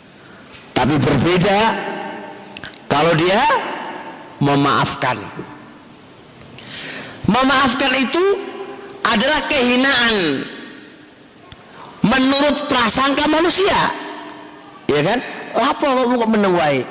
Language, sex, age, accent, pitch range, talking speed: Indonesian, male, 50-69, native, 170-280 Hz, 55 wpm